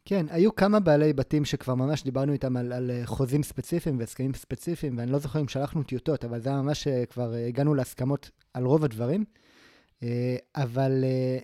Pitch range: 125-155 Hz